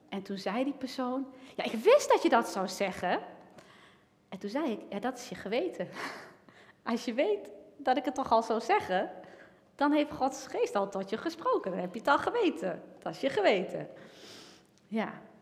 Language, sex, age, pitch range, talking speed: Dutch, female, 30-49, 195-305 Hz, 200 wpm